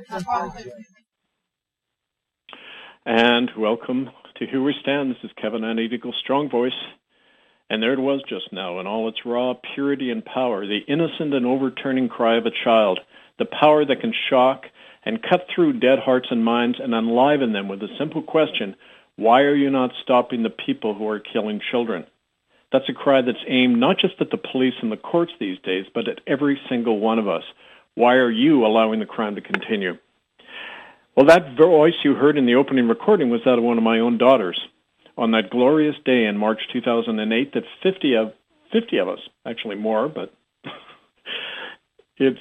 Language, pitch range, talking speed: English, 115-150 Hz, 180 wpm